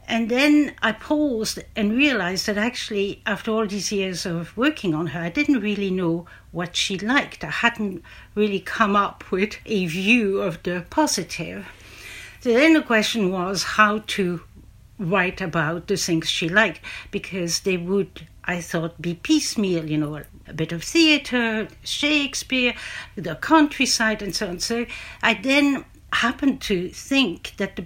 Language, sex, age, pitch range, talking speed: English, female, 60-79, 180-235 Hz, 160 wpm